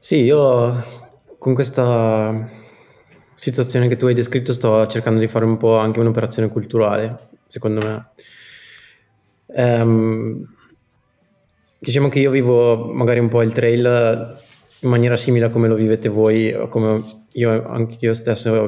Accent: native